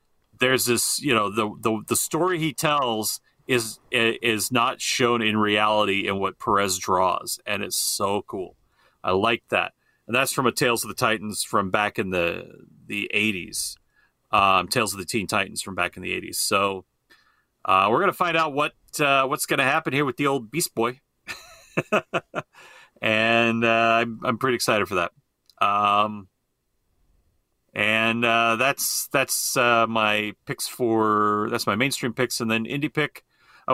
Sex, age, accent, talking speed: male, 40-59, American, 170 wpm